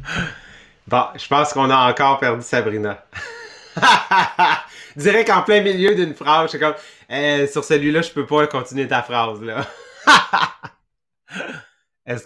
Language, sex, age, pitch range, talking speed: English, male, 30-49, 140-190 Hz, 135 wpm